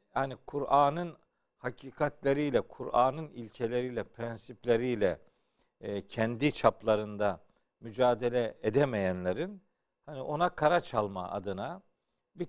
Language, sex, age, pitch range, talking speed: Turkish, male, 50-69, 120-160 Hz, 80 wpm